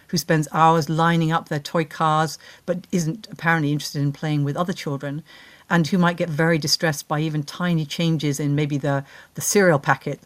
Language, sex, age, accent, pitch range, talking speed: English, female, 50-69, British, 150-175 Hz, 195 wpm